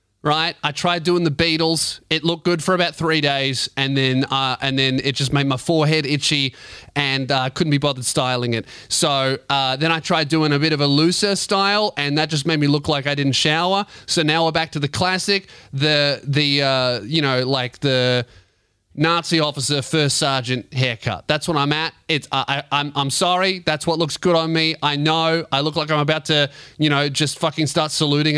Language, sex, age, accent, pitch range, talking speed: English, male, 20-39, Australian, 140-190 Hz, 215 wpm